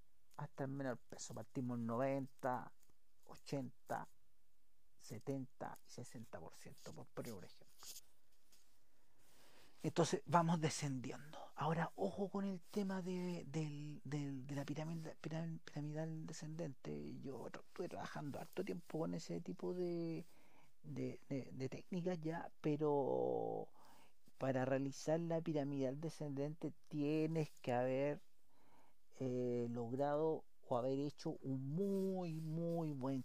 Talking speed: 105 wpm